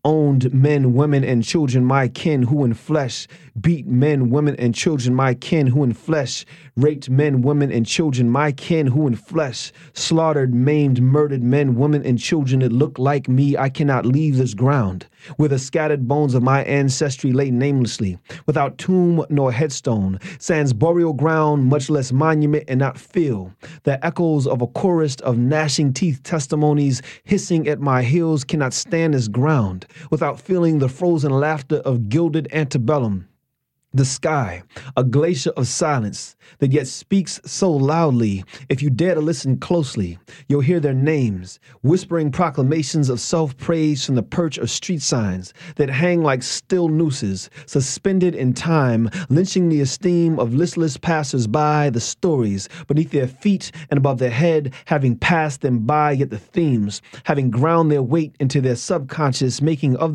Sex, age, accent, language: male, 30-49, American, English